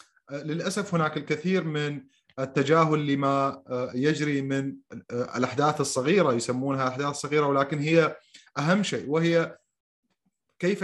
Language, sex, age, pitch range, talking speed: Arabic, male, 30-49, 140-175 Hz, 105 wpm